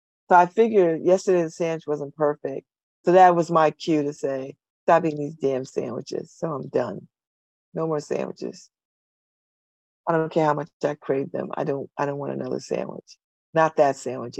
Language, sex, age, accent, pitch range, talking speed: English, female, 40-59, American, 145-185 Hz, 180 wpm